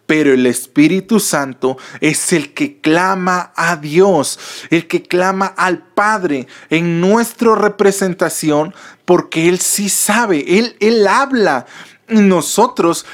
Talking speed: 120 wpm